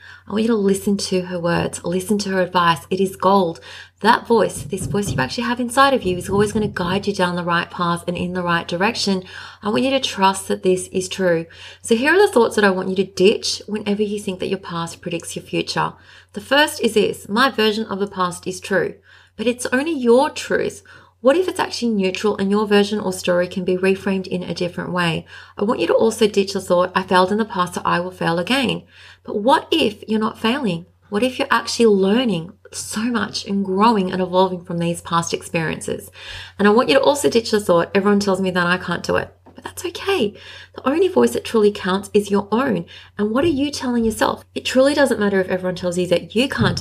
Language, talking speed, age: English, 240 wpm, 30-49